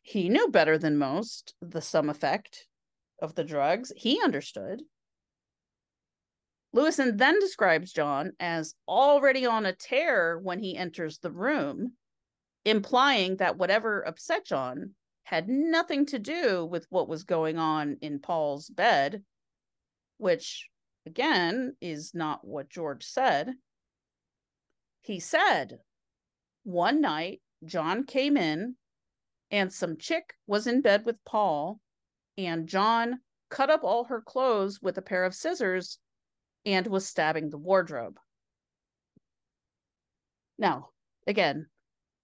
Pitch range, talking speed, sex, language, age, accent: 165-245 Hz, 120 wpm, female, English, 40-59, American